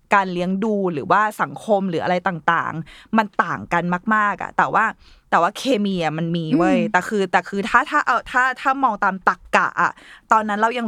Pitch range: 185-245 Hz